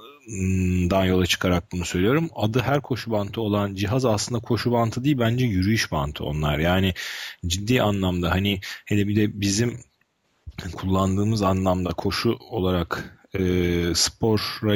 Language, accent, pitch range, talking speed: Turkish, native, 85-110 Hz, 130 wpm